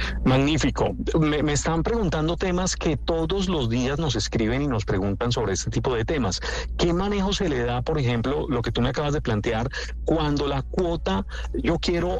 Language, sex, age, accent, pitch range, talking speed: Spanish, male, 40-59, Colombian, 120-165 Hz, 190 wpm